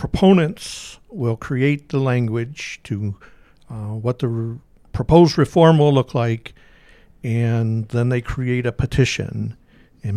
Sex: male